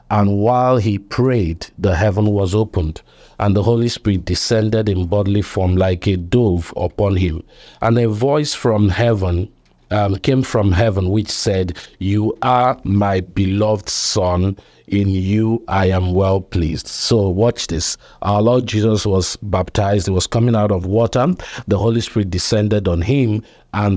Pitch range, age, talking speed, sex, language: 95-120 Hz, 50-69, 160 wpm, male, English